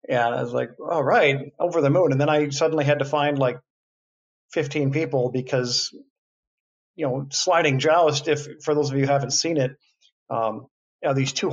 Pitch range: 125-150 Hz